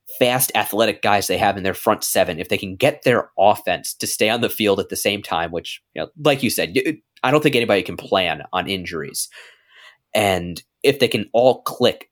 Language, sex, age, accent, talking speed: English, male, 20-39, American, 220 wpm